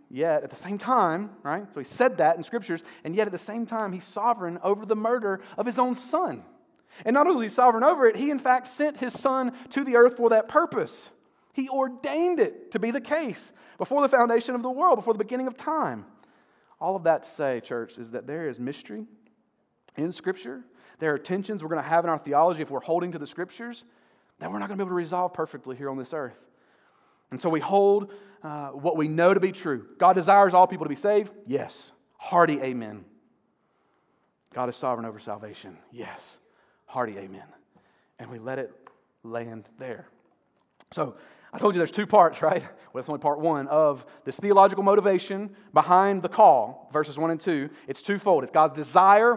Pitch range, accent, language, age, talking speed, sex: 160-230 Hz, American, English, 30-49, 210 wpm, male